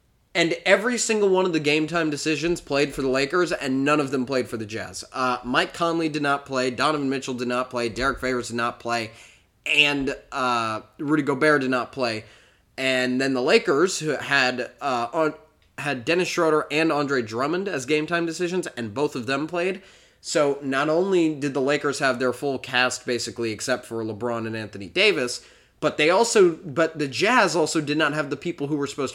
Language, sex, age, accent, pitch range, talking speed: English, male, 20-39, American, 130-160 Hz, 200 wpm